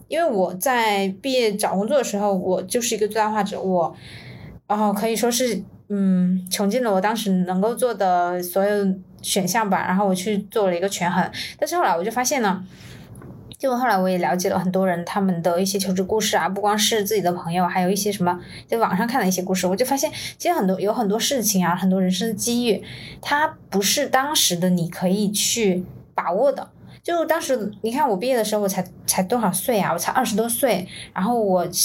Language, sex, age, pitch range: Chinese, female, 20-39, 185-230 Hz